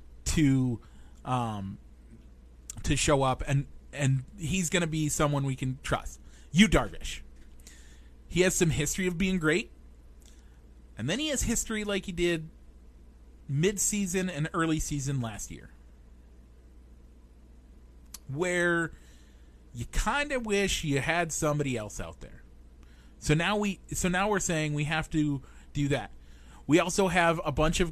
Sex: male